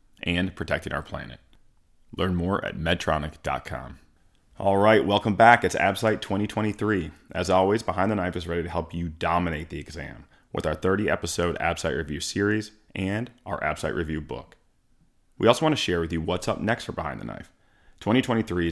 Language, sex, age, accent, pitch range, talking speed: English, male, 30-49, American, 85-105 Hz, 175 wpm